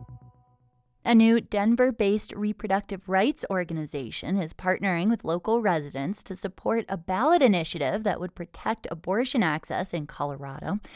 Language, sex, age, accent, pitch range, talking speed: English, female, 20-39, American, 165-220 Hz, 125 wpm